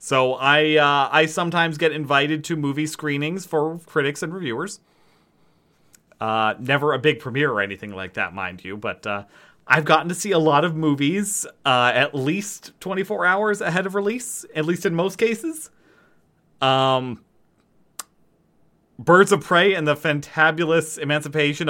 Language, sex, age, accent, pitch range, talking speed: English, male, 30-49, American, 135-170 Hz, 155 wpm